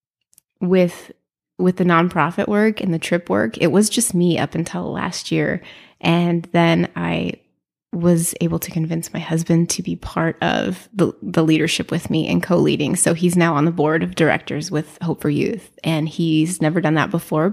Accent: American